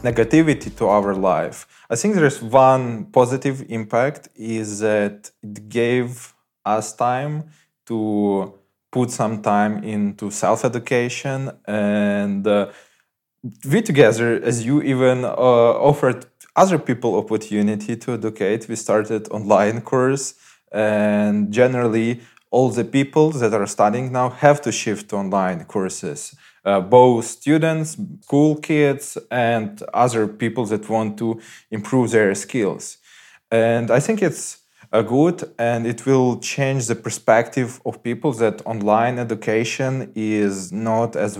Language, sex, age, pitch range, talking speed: English, male, 20-39, 105-125 Hz, 130 wpm